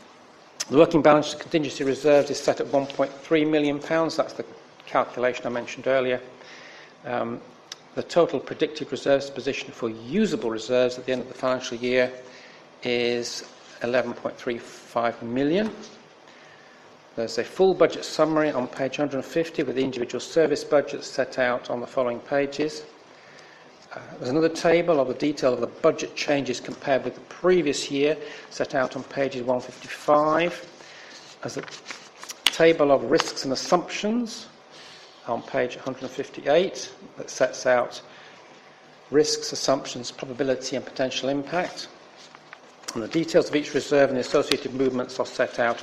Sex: male